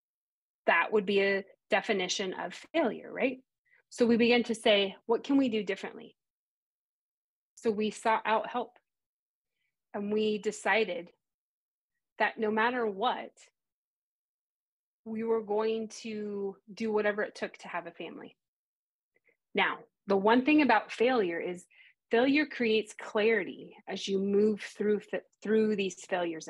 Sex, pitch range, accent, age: female, 195-240 Hz, American, 30-49